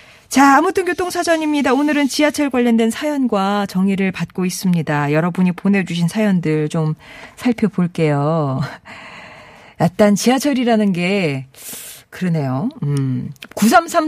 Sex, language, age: female, Korean, 40-59